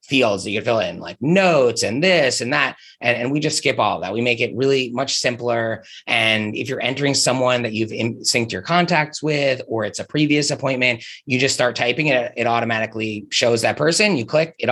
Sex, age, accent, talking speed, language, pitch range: male, 30-49, American, 225 wpm, English, 115-140 Hz